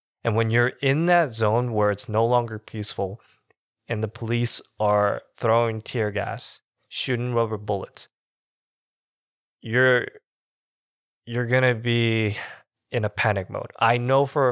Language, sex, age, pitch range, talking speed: English, male, 20-39, 105-125 Hz, 140 wpm